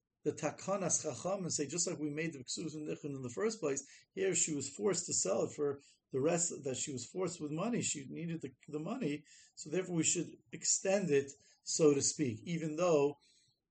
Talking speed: 195 wpm